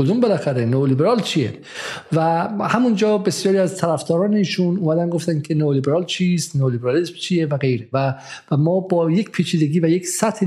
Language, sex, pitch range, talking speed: Persian, male, 150-180 Hz, 150 wpm